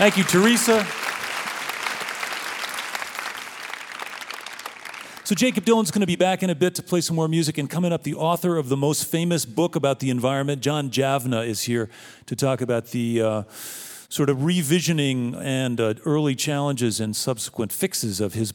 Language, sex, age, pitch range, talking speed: English, male, 40-59, 115-145 Hz, 170 wpm